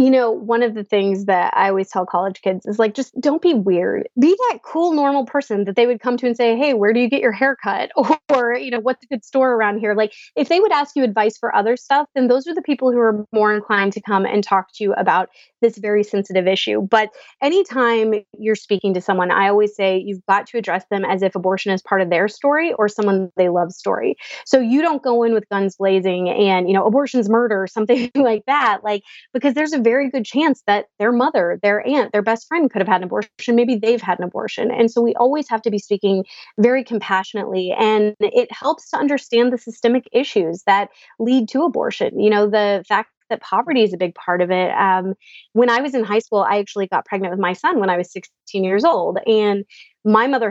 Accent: American